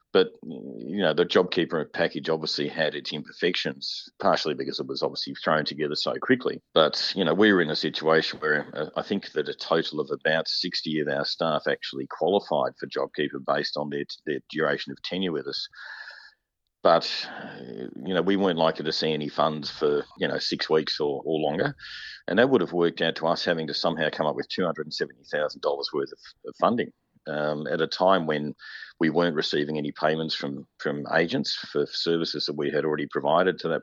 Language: English